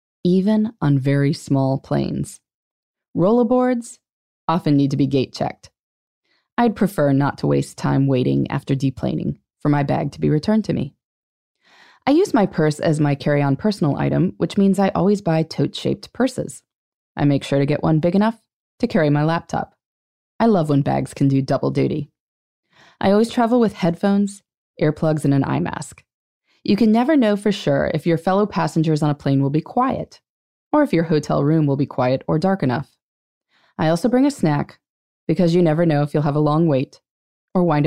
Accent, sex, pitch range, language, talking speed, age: American, female, 140-200 Hz, English, 185 wpm, 20-39